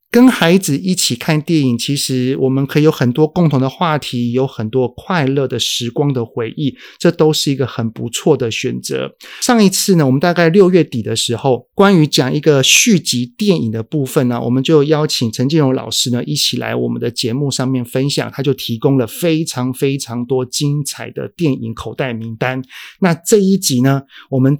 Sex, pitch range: male, 125-165 Hz